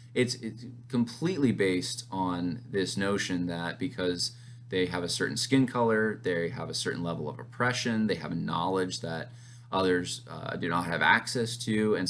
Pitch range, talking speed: 95-120 Hz, 175 wpm